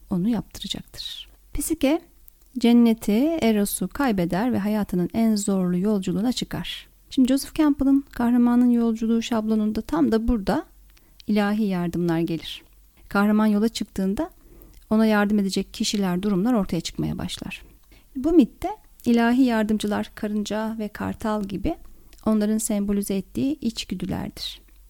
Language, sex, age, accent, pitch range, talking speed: Turkish, female, 30-49, native, 195-235 Hz, 115 wpm